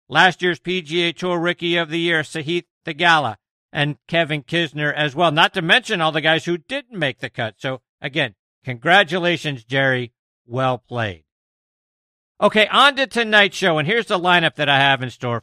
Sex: male